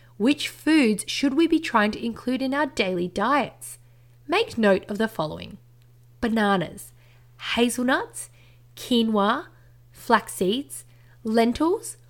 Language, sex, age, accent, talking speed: English, female, 20-39, Australian, 115 wpm